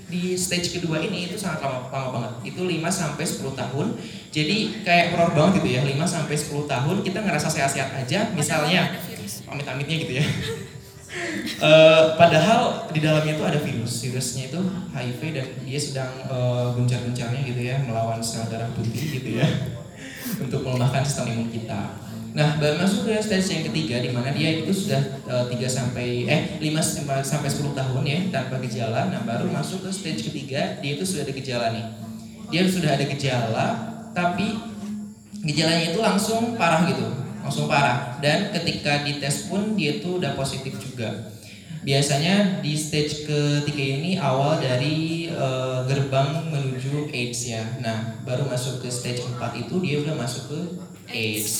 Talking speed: 150 wpm